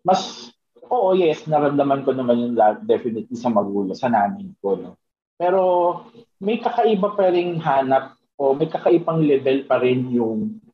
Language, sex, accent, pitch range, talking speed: Filipino, male, native, 120-180 Hz, 155 wpm